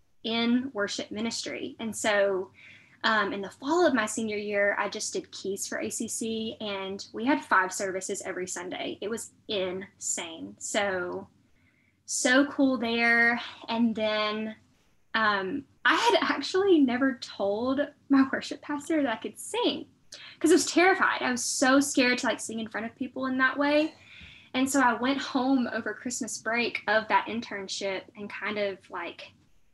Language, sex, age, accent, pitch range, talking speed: English, female, 10-29, American, 210-290 Hz, 165 wpm